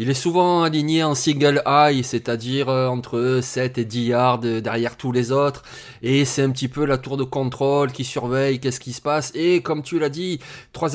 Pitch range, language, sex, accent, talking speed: 130-155 Hz, French, male, French, 210 wpm